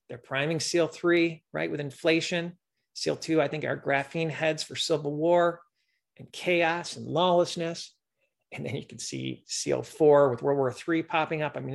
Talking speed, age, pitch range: 185 wpm, 40-59, 135-180 Hz